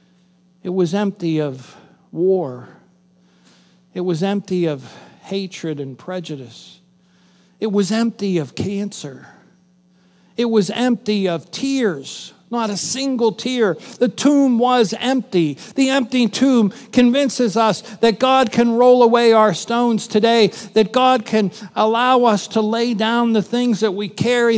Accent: American